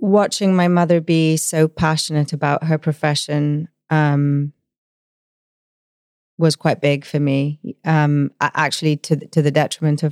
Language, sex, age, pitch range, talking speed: English, female, 30-49, 140-155 Hz, 130 wpm